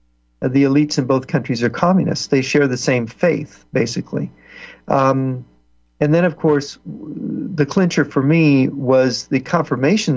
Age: 50-69